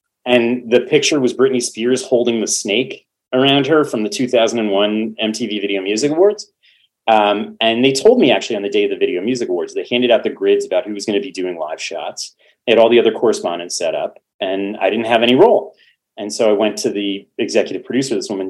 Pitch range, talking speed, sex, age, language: 105-155 Hz, 225 wpm, male, 30-49, English